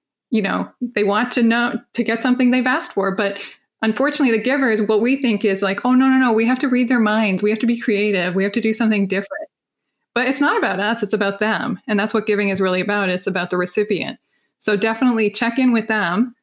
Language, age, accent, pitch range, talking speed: English, 20-39, American, 205-245 Hz, 245 wpm